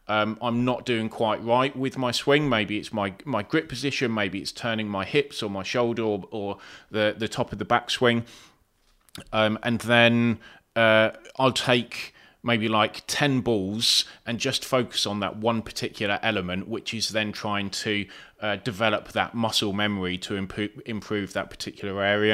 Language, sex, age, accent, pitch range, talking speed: English, male, 30-49, British, 105-120 Hz, 175 wpm